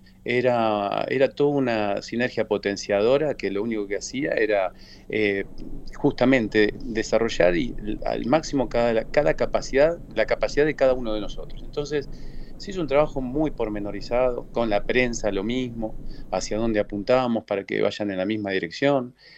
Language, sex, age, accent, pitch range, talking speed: Spanish, male, 40-59, Argentinian, 105-130 Hz, 155 wpm